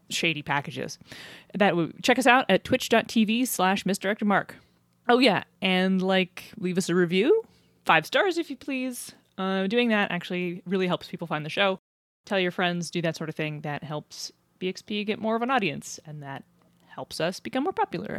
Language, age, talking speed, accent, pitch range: English, 20-39, 190 wpm, American, 180-255 Hz